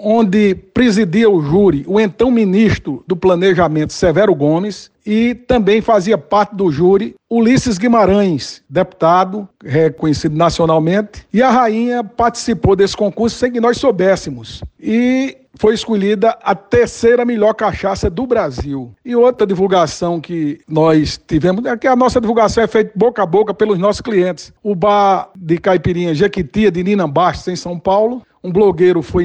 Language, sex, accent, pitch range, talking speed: Portuguese, male, Brazilian, 175-220 Hz, 150 wpm